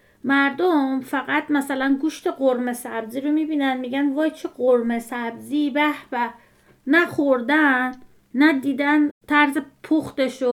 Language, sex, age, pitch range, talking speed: Persian, female, 30-49, 255-300 Hz, 120 wpm